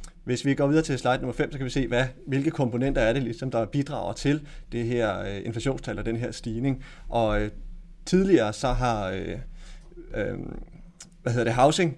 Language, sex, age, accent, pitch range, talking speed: Danish, male, 30-49, native, 115-145 Hz, 205 wpm